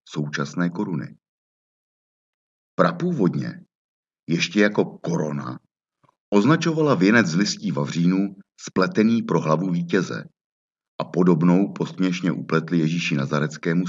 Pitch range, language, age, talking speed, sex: 80-115 Hz, Czech, 50-69, 90 wpm, male